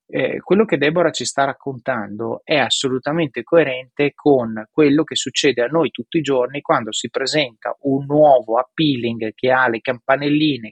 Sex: male